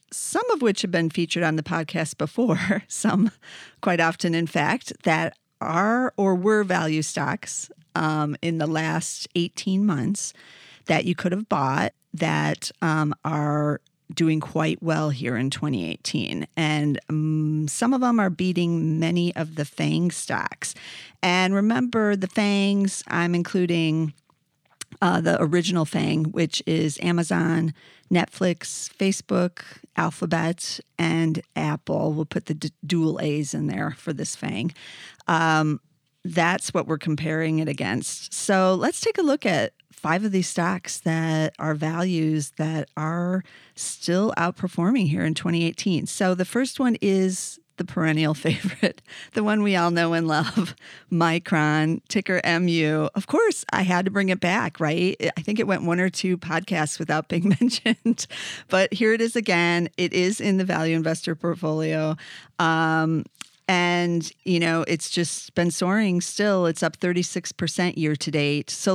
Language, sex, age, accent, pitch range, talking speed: English, female, 40-59, American, 155-190 Hz, 150 wpm